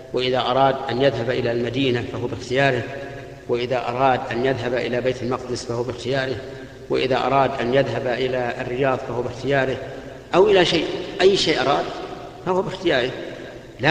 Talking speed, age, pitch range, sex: 145 wpm, 50-69, 130-160 Hz, male